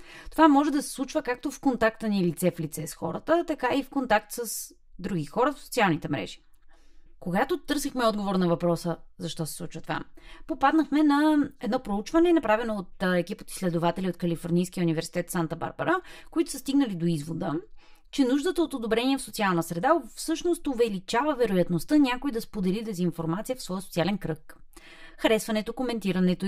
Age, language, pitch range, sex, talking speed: 30-49, Bulgarian, 160-240 Hz, female, 160 wpm